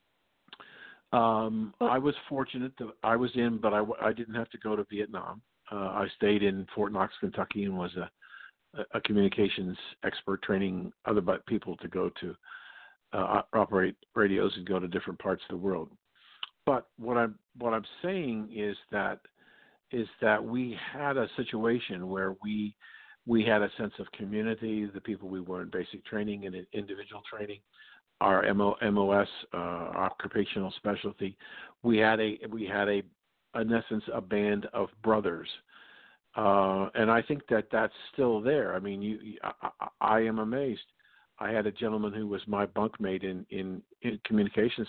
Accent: American